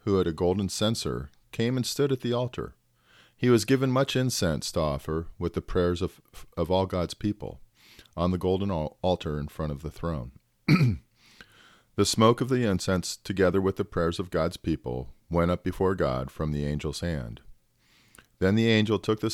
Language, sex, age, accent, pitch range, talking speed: English, male, 40-59, American, 80-100 Hz, 190 wpm